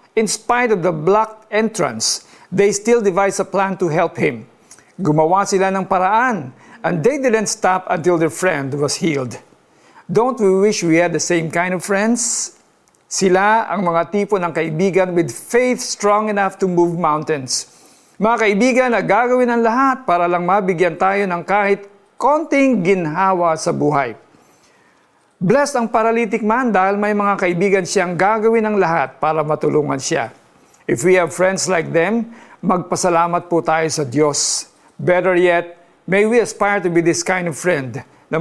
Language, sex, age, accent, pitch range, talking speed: Filipino, male, 50-69, native, 165-205 Hz, 160 wpm